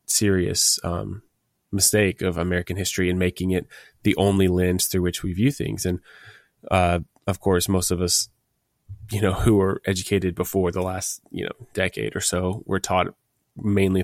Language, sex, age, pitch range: English, male, 20-39, 90-100 Hz